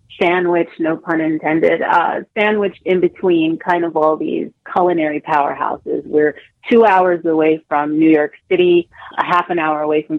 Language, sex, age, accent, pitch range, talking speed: English, female, 30-49, American, 160-195 Hz, 165 wpm